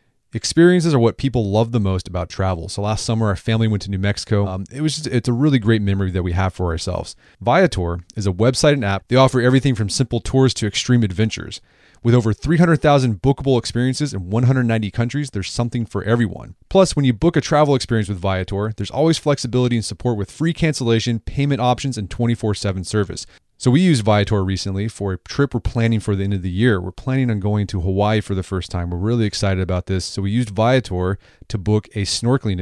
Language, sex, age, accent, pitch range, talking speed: English, male, 30-49, American, 95-130 Hz, 220 wpm